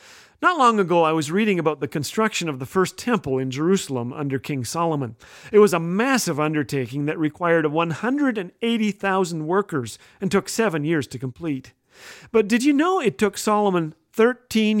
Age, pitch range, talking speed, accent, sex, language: 40-59, 155-210 Hz, 165 wpm, American, male, English